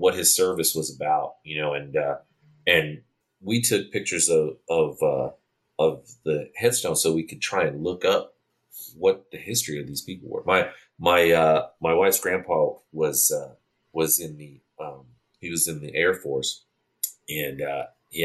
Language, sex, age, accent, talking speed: English, male, 30-49, American, 180 wpm